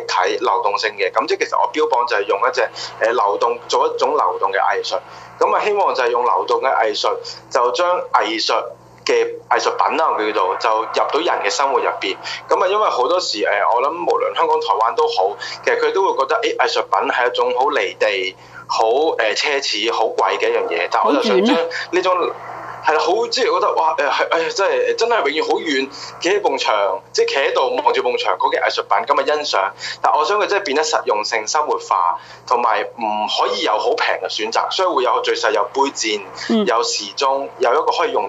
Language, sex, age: Chinese, male, 20-39